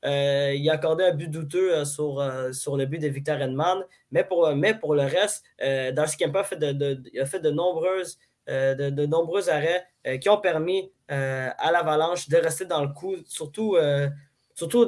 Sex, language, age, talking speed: male, French, 20-39, 220 wpm